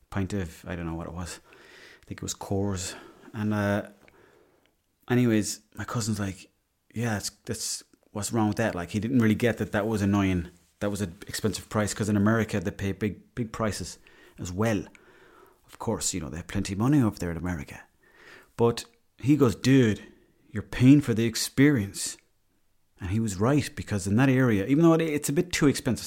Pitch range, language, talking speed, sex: 100-130 Hz, English, 200 wpm, male